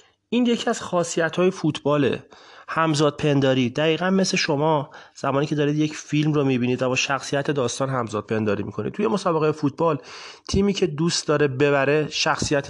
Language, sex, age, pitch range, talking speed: Persian, male, 30-49, 125-160 Hz, 155 wpm